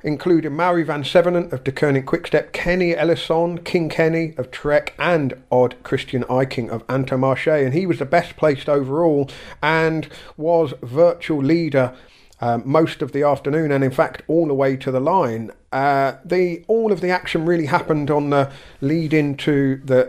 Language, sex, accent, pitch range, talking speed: English, male, British, 140-165 Hz, 175 wpm